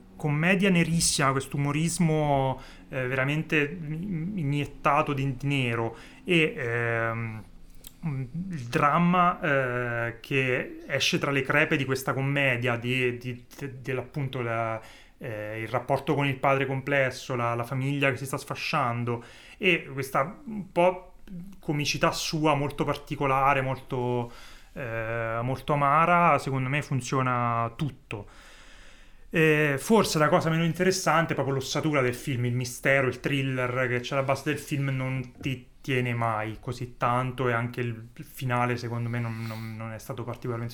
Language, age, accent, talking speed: Italian, 30-49, native, 135 wpm